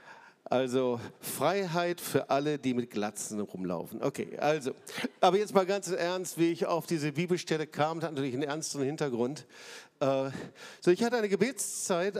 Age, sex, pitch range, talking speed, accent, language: 50-69, male, 140-195 Hz, 155 wpm, German, German